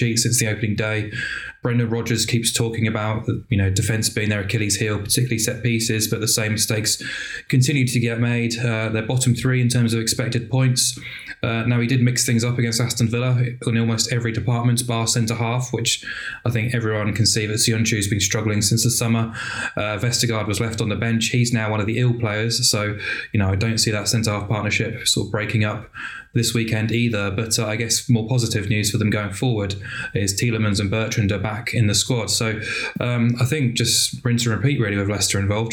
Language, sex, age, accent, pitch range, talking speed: English, male, 20-39, British, 110-120 Hz, 215 wpm